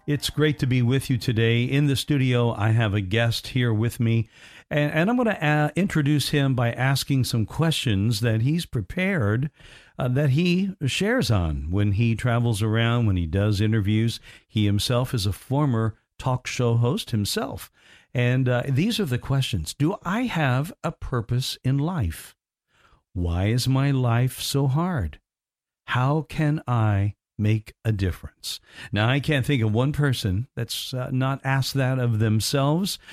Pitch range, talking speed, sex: 115-145 Hz, 165 wpm, male